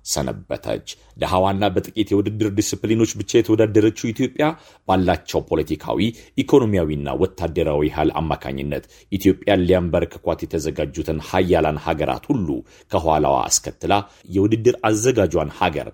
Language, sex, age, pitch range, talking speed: Amharic, male, 40-59, 80-110 Hz, 100 wpm